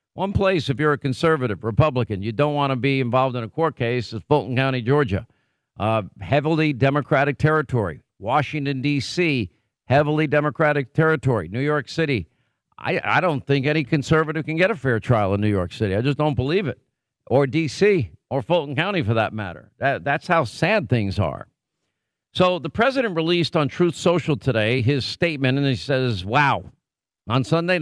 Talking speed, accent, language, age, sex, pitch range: 180 wpm, American, English, 50-69, male, 125-150 Hz